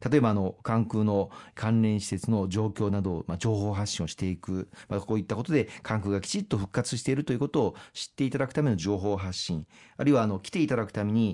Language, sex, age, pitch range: Japanese, male, 40-59, 95-125 Hz